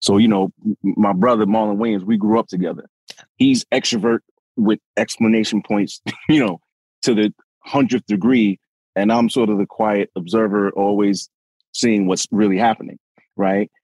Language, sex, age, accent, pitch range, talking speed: English, male, 30-49, American, 105-145 Hz, 150 wpm